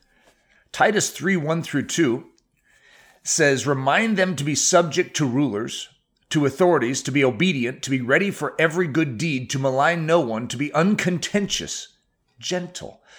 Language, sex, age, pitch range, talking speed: English, male, 40-59, 140-185 Hz, 150 wpm